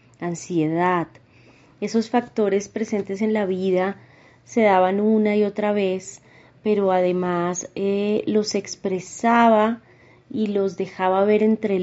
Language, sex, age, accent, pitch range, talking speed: Spanish, female, 20-39, Colombian, 165-195 Hz, 115 wpm